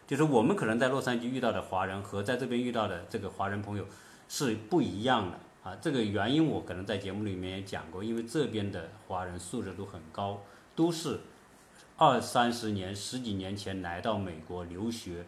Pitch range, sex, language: 100-145 Hz, male, Chinese